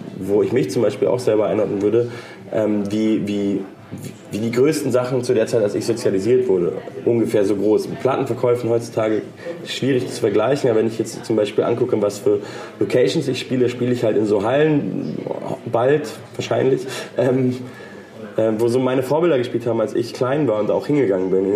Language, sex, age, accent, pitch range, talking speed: German, male, 20-39, German, 100-130 Hz, 190 wpm